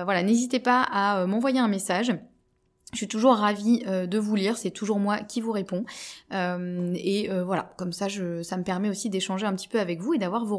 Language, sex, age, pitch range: French, female, 20-39, 190-240 Hz